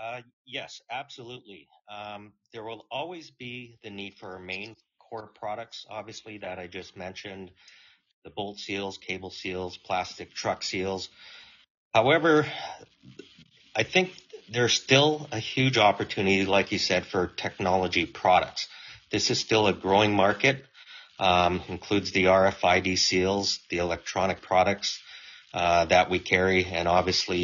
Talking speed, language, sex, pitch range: 135 wpm, English, male, 90-110 Hz